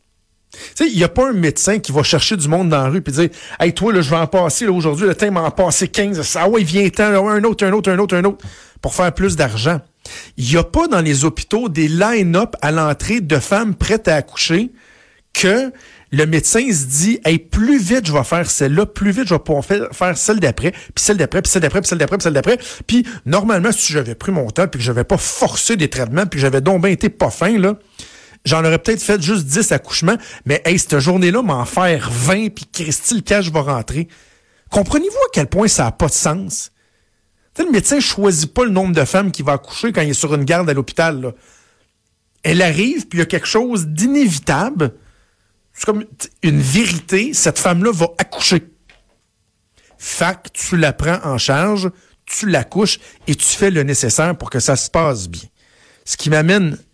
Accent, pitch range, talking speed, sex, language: Canadian, 145-205 Hz, 230 wpm, male, French